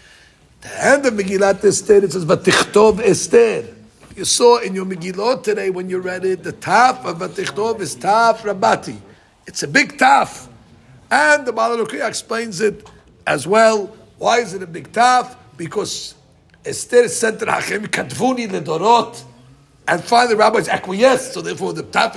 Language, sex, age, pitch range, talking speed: English, male, 60-79, 170-220 Hz, 160 wpm